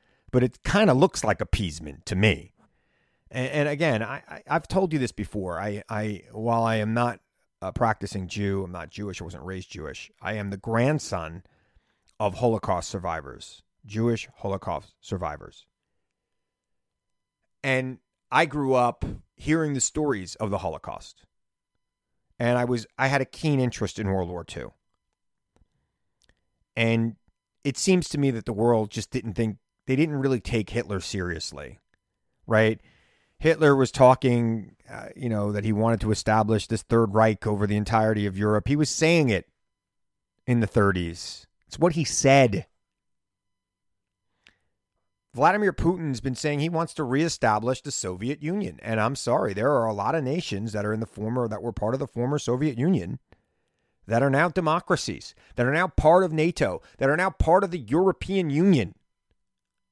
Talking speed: 165 wpm